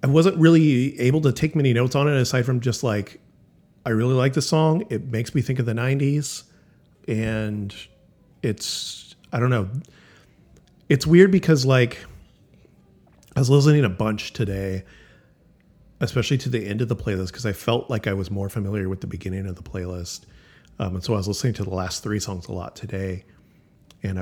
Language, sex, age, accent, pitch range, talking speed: English, male, 30-49, American, 100-130 Hz, 190 wpm